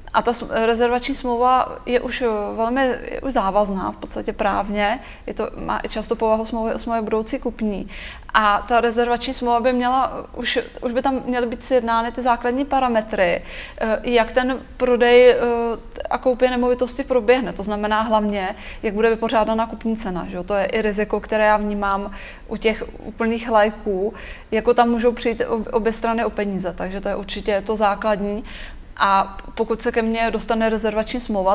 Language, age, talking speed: Czech, 20-39, 170 wpm